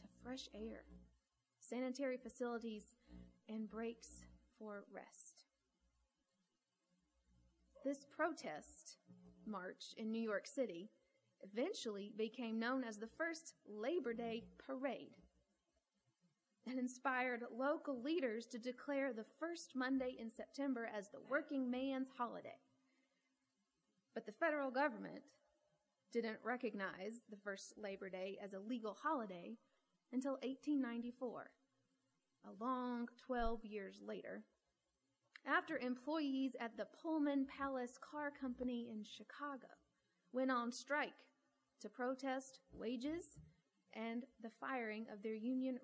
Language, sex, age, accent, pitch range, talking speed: English, female, 30-49, American, 220-270 Hz, 110 wpm